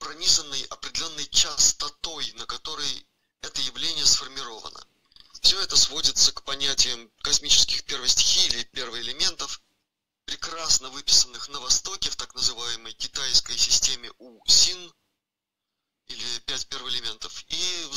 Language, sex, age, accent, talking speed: Russian, male, 30-49, native, 105 wpm